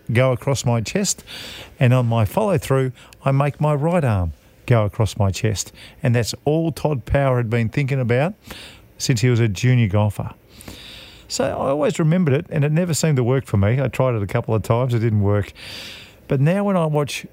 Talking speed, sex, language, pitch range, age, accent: 210 wpm, male, English, 110-140 Hz, 40-59, Australian